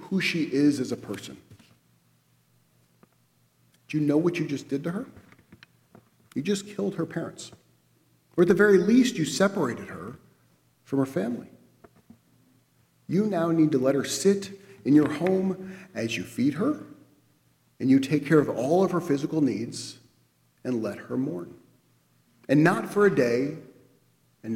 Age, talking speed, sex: 40-59, 160 wpm, male